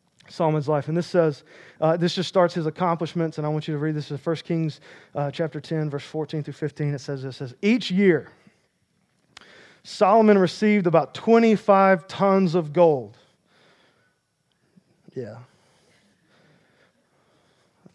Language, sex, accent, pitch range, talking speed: English, male, American, 145-180 Hz, 145 wpm